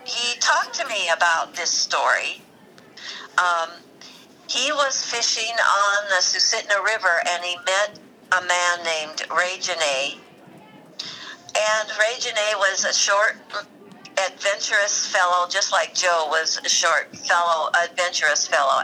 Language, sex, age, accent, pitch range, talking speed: English, female, 60-79, American, 175-220 Hz, 125 wpm